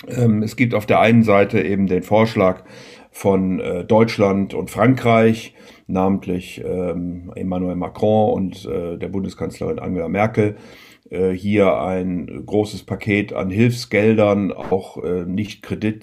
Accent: German